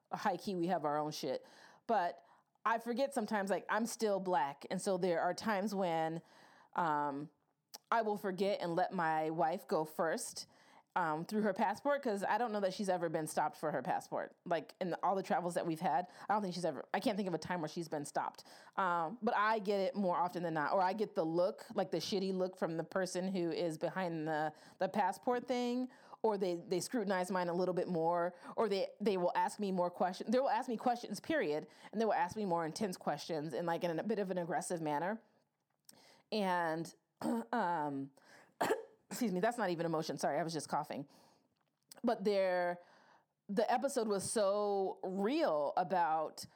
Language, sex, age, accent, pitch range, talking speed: English, female, 30-49, American, 170-215 Hz, 205 wpm